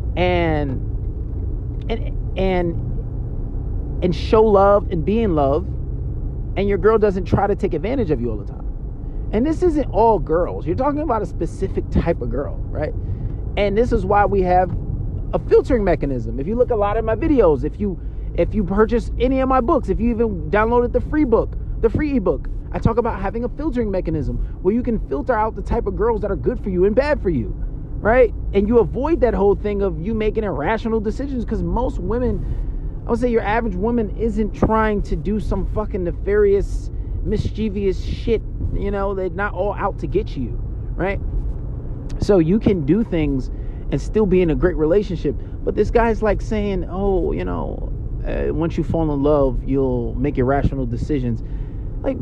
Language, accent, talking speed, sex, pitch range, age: English, American, 195 wpm, male, 135-225 Hz, 30-49